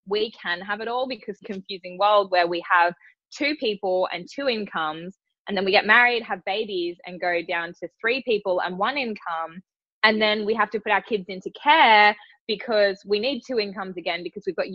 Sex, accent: female, Australian